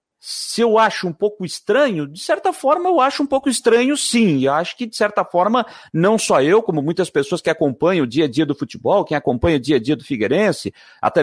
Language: Portuguese